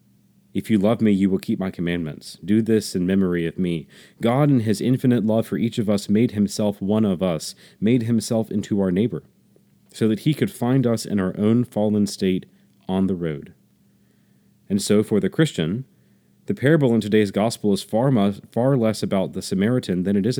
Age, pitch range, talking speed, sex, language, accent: 30-49, 95-120 Hz, 205 wpm, male, English, American